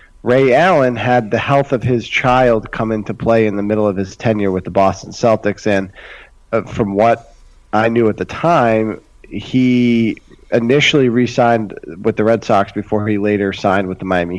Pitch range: 100-115 Hz